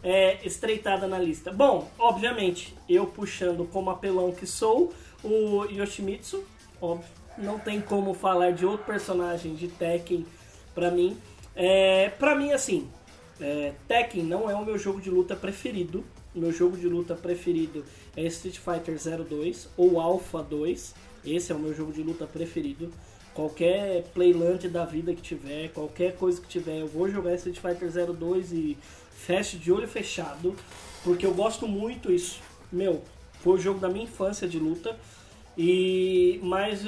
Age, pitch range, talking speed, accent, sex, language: 20-39, 170-205 Hz, 155 wpm, Brazilian, male, Portuguese